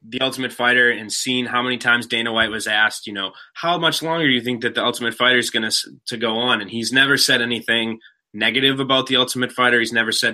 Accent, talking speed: American, 250 wpm